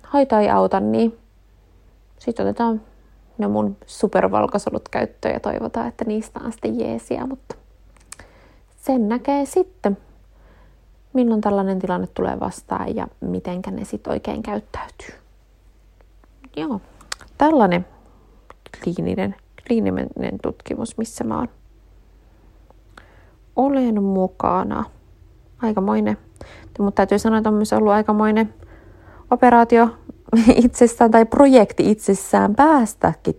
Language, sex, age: Finnish, female, 30-49